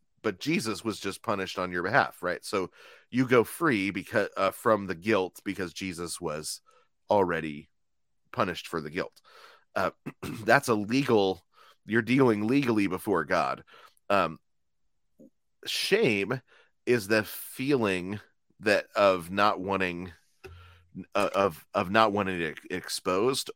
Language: English